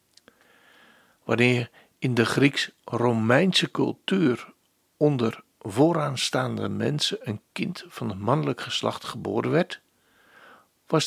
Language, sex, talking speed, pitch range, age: Dutch, male, 90 wpm, 115-165 Hz, 60-79